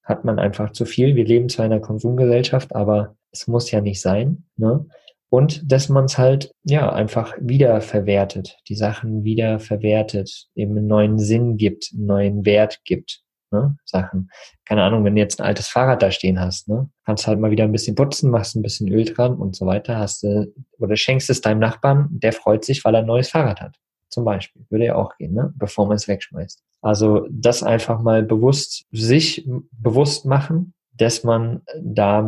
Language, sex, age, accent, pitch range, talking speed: German, male, 20-39, German, 105-130 Hz, 200 wpm